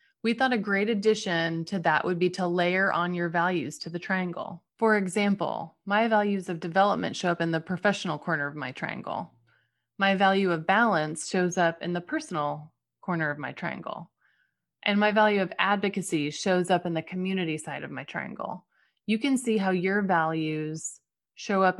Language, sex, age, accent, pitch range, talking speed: English, female, 20-39, American, 170-210 Hz, 185 wpm